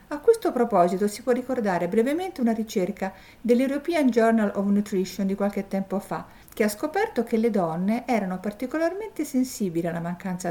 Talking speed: 160 wpm